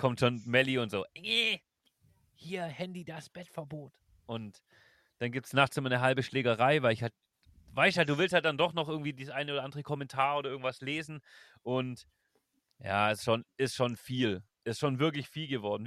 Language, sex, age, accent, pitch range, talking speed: German, male, 30-49, German, 110-135 Hz, 200 wpm